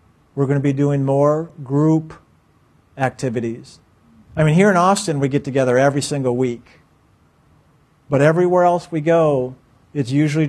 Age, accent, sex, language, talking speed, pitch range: 50-69, American, male, English, 150 wpm, 130-155 Hz